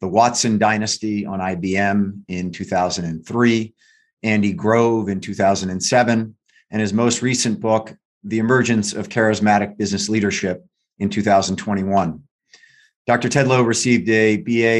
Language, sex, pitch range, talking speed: English, male, 100-115 Hz, 120 wpm